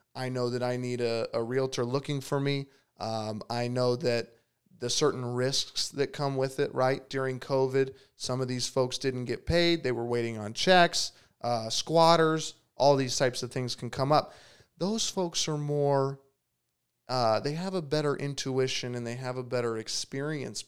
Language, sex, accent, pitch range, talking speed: English, male, American, 125-155 Hz, 185 wpm